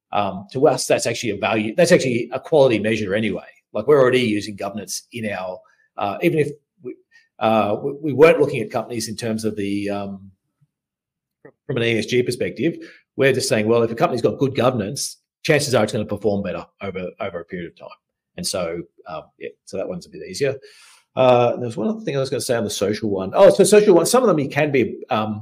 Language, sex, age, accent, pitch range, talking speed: English, male, 40-59, Australian, 105-150 Hz, 230 wpm